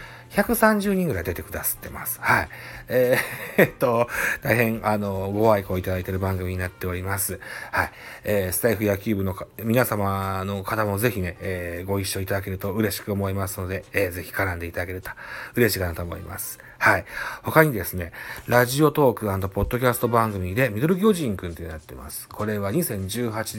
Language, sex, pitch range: Japanese, male, 95-125 Hz